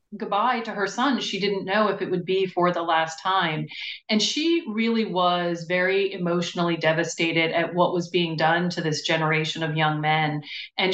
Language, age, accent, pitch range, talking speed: English, 40-59, American, 165-200 Hz, 185 wpm